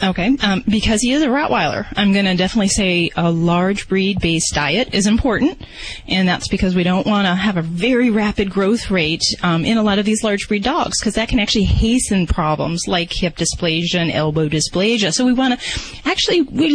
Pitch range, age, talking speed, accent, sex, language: 180-235 Hz, 30-49, 210 wpm, American, female, English